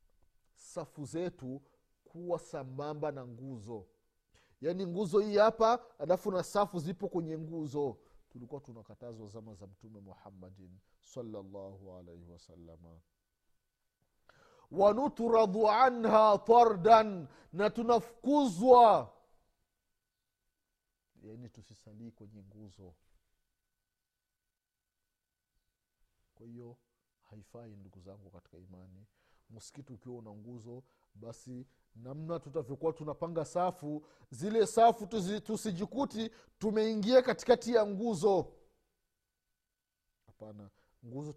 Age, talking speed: 50-69, 90 wpm